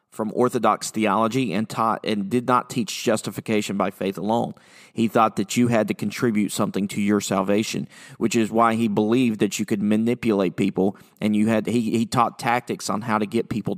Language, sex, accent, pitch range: English, male, American, 105-125 Hz